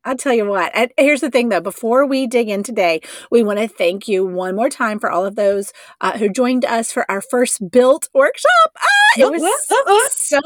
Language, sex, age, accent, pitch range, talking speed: English, female, 30-49, American, 185-250 Hz, 225 wpm